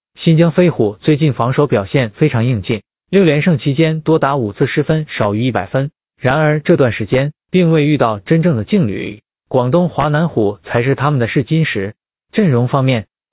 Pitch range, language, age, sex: 120-155 Hz, Chinese, 20-39, male